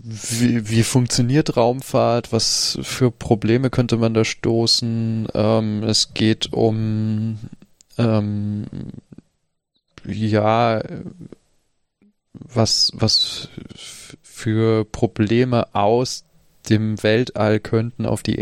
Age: 20-39